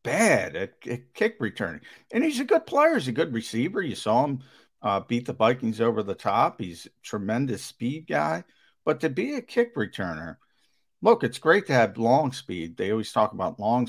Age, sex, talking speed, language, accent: 50-69, male, 195 wpm, English, American